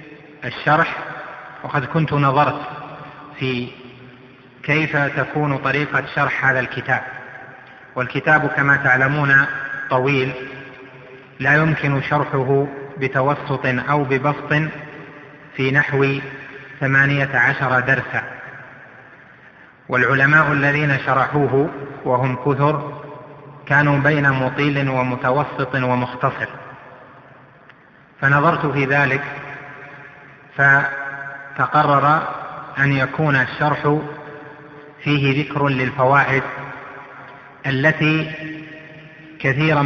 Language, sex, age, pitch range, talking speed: Arabic, male, 30-49, 135-150 Hz, 70 wpm